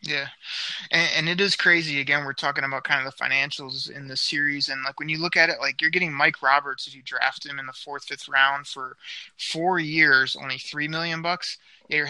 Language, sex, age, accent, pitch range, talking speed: English, male, 20-39, American, 135-160 Hz, 230 wpm